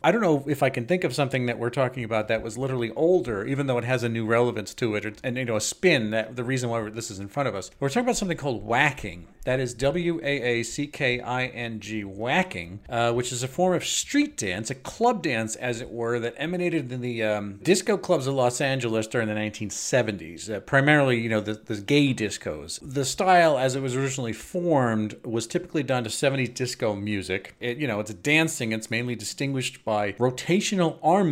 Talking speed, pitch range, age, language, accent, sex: 215 wpm, 115-145 Hz, 40-59, English, American, male